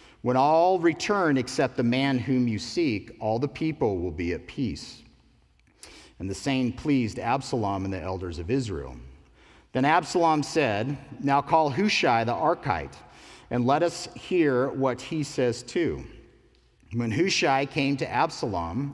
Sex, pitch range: male, 110-145 Hz